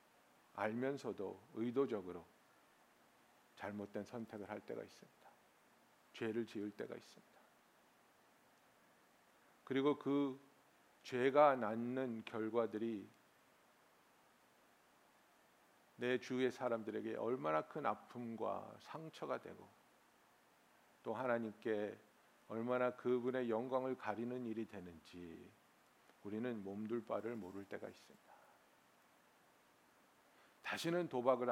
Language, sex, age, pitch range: Korean, male, 50-69, 105-130 Hz